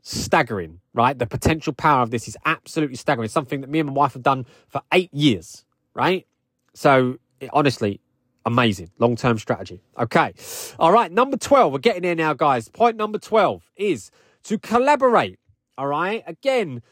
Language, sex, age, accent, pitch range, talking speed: English, male, 20-39, British, 150-215 Hz, 165 wpm